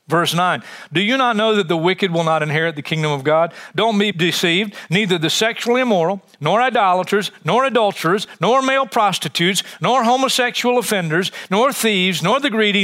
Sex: male